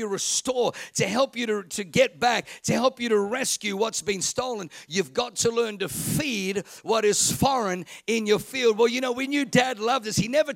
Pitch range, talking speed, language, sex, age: 220-265 Hz, 215 wpm, English, male, 50-69